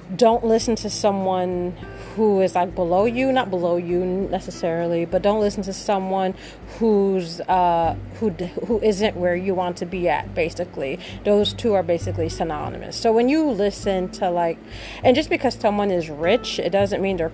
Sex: female